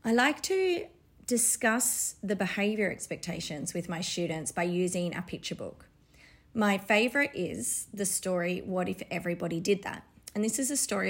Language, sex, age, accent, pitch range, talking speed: English, female, 30-49, Australian, 175-215 Hz, 160 wpm